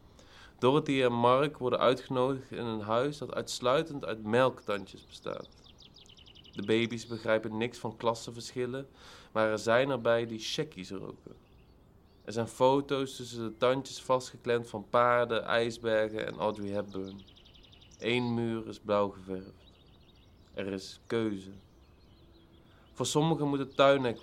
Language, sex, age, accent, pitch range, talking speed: Dutch, male, 20-39, Dutch, 105-120 Hz, 130 wpm